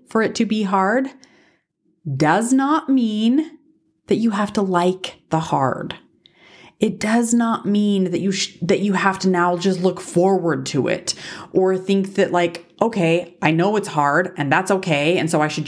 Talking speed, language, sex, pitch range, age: 185 wpm, English, female, 150-195 Hz, 30-49